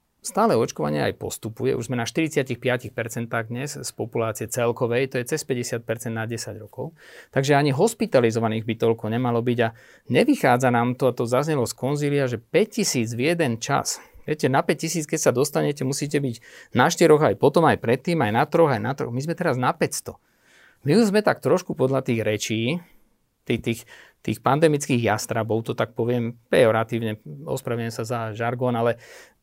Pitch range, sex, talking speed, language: 115-140 Hz, male, 175 wpm, Slovak